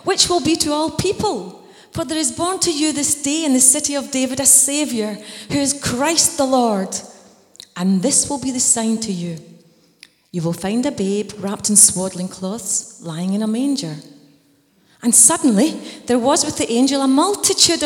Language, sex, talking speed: English, female, 190 wpm